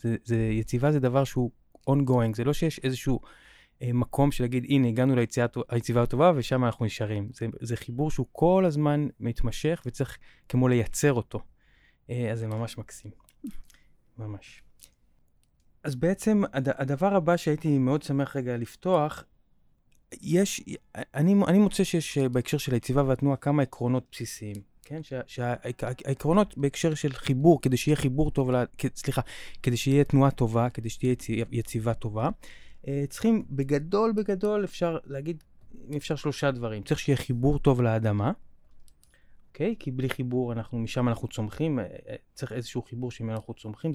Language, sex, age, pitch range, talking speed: Hebrew, male, 20-39, 115-145 Hz, 145 wpm